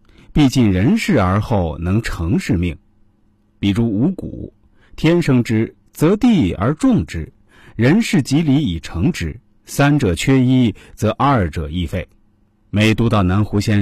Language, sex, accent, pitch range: Chinese, male, native, 90-135 Hz